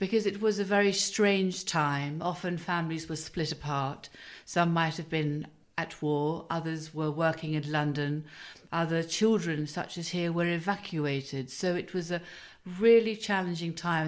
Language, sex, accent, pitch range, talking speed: English, female, British, 155-185 Hz, 160 wpm